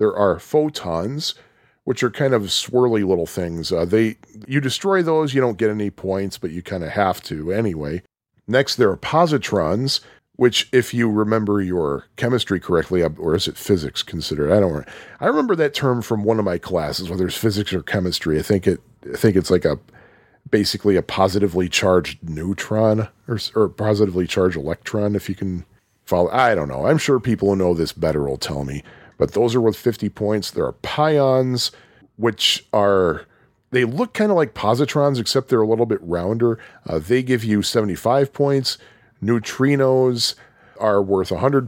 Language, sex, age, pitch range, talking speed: English, male, 40-59, 95-130 Hz, 185 wpm